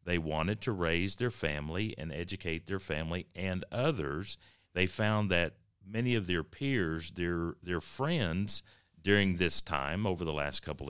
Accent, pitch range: American, 80-105 Hz